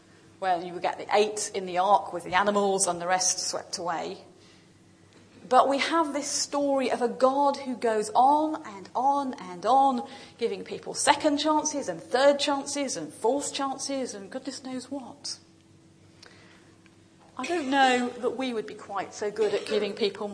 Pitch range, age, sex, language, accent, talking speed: 185-275 Hz, 40-59, female, English, British, 175 wpm